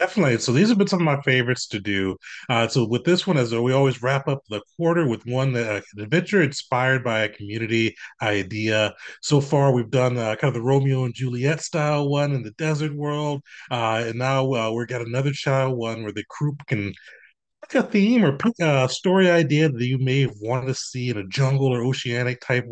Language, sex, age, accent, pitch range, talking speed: English, male, 30-49, American, 115-150 Hz, 215 wpm